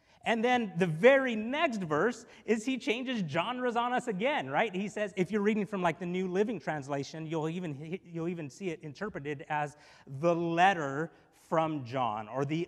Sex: male